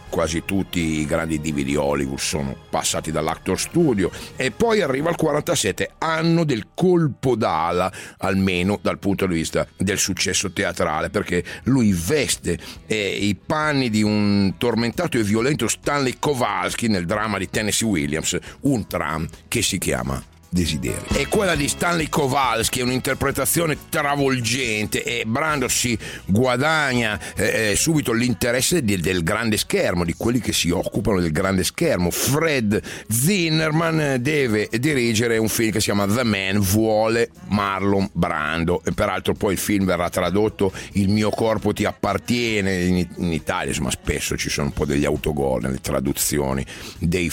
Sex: male